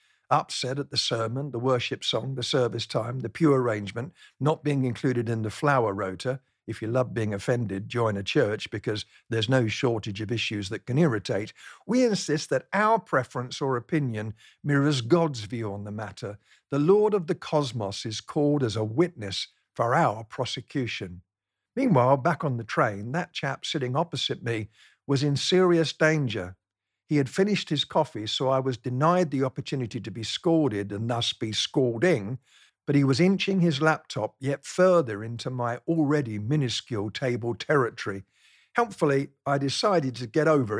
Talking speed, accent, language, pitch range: 170 wpm, British, English, 115-155 Hz